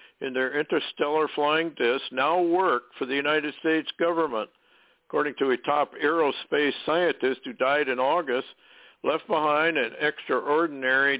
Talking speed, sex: 140 wpm, male